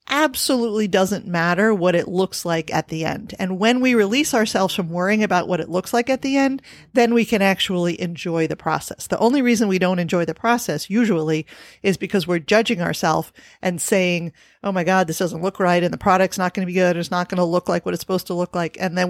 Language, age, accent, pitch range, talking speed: English, 40-59, American, 180-215 Hz, 240 wpm